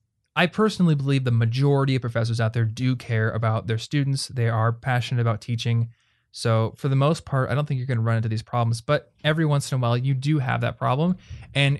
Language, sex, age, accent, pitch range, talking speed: English, male, 20-39, American, 115-140 Hz, 235 wpm